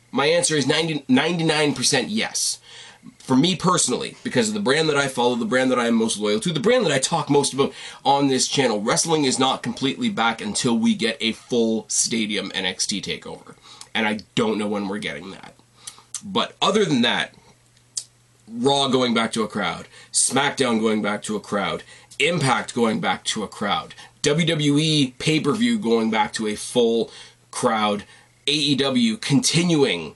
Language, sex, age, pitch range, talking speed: English, male, 20-39, 115-155 Hz, 170 wpm